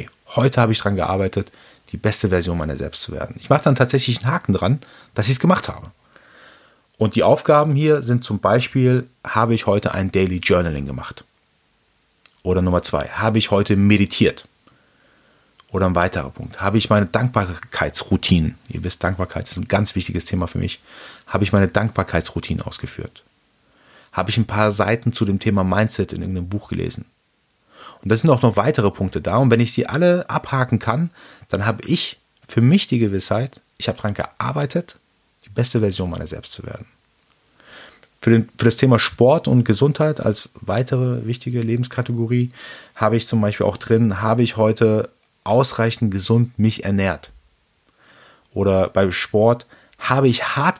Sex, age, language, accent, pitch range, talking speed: male, 30-49, German, German, 95-120 Hz, 170 wpm